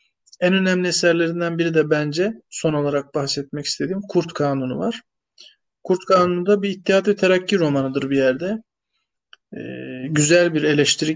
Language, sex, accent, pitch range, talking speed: Turkish, male, native, 145-175 Hz, 140 wpm